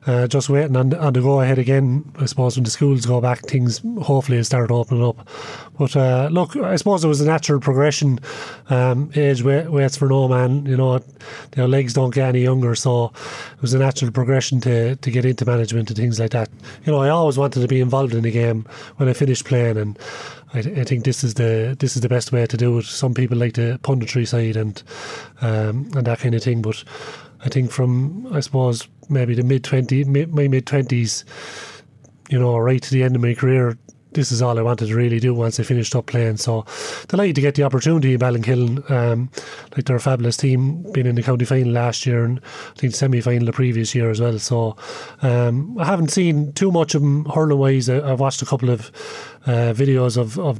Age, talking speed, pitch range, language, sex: 30-49, 225 wpm, 120-140 Hz, English, male